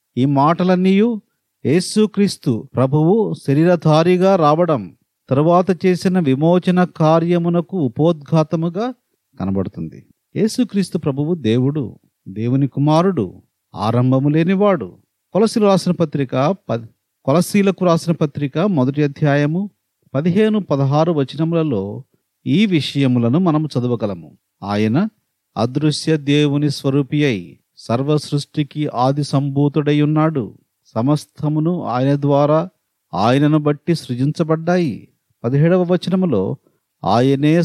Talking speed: 85 wpm